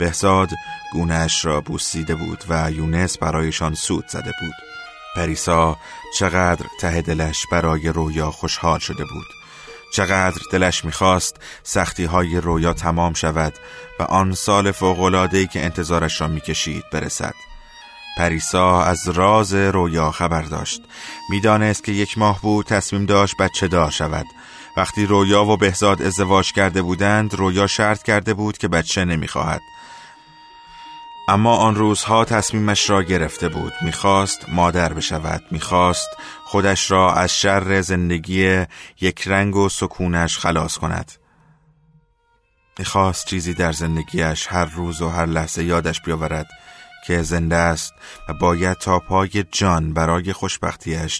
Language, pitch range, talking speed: Persian, 80-100 Hz, 130 wpm